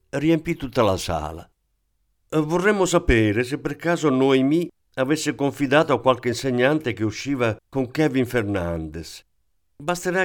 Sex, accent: male, native